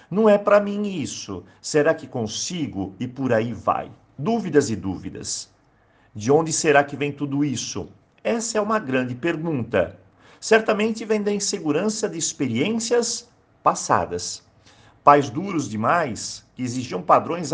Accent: Brazilian